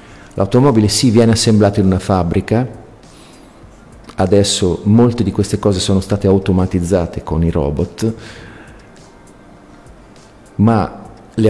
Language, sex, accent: Italian, male, native